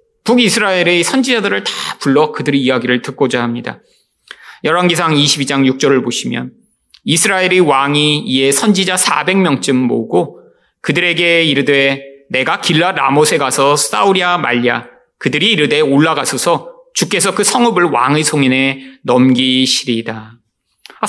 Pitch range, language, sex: 135-195 Hz, Korean, male